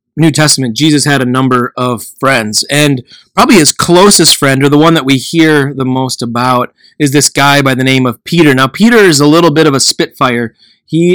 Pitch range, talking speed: 120-145 Hz, 215 wpm